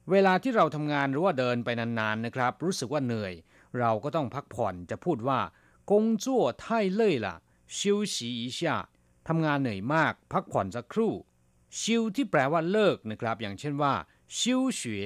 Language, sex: Thai, male